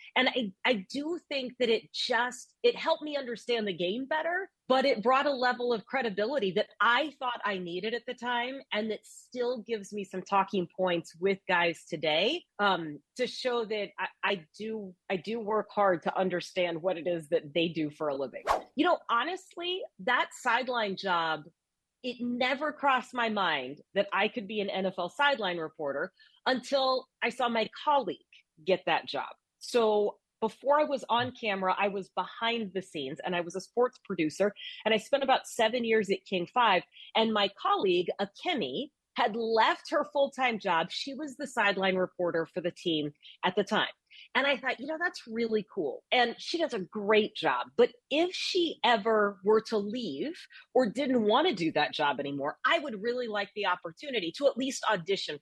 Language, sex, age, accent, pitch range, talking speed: English, female, 30-49, American, 190-265 Hz, 190 wpm